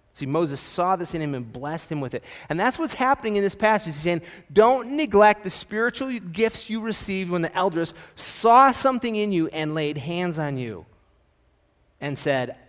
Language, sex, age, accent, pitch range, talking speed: English, male, 30-49, American, 125-185 Hz, 195 wpm